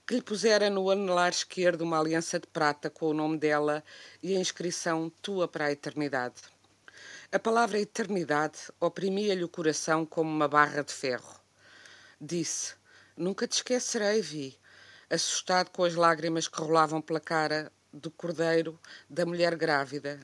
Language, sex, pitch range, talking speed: Portuguese, female, 150-180 Hz, 150 wpm